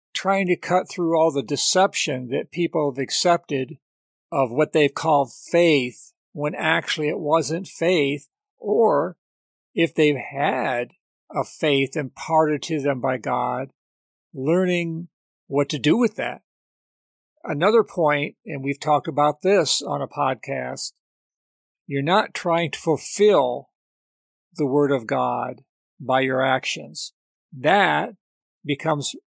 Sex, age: male, 50-69